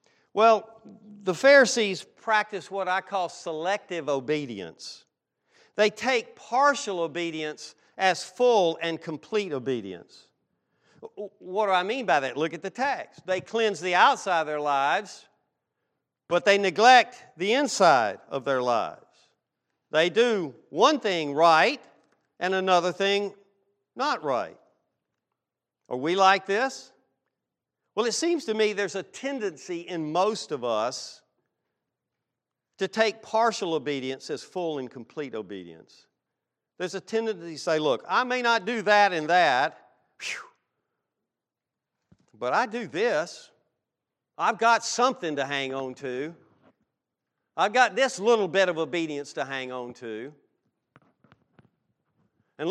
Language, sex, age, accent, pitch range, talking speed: English, male, 50-69, American, 165-230 Hz, 130 wpm